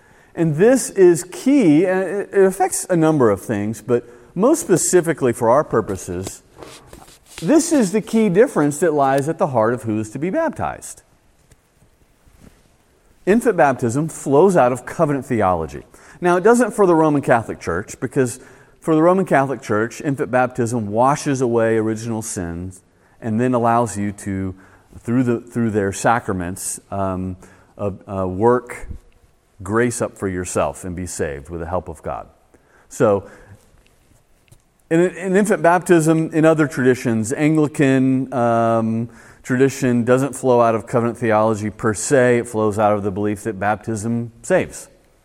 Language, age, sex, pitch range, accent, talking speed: English, 40-59, male, 105-155 Hz, American, 150 wpm